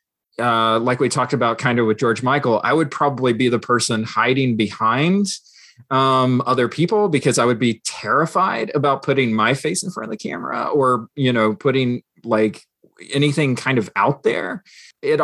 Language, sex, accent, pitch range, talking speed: English, male, American, 115-150 Hz, 180 wpm